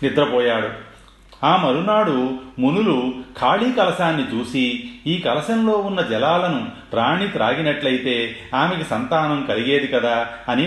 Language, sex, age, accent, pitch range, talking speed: Telugu, male, 40-59, native, 115-155 Hz, 100 wpm